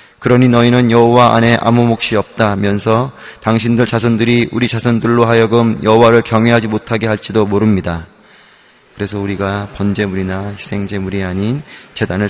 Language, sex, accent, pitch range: Korean, male, native, 100-120 Hz